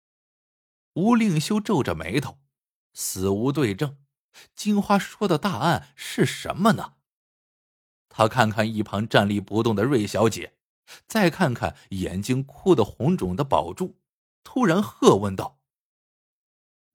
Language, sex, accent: Chinese, male, native